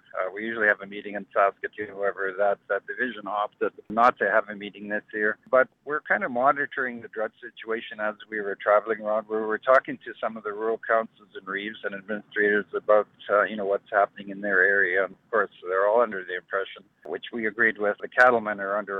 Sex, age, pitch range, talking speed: male, 60-79, 100-120 Hz, 225 wpm